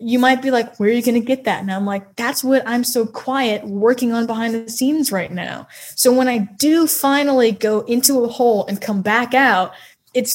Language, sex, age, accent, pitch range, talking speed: English, female, 10-29, American, 200-245 Hz, 230 wpm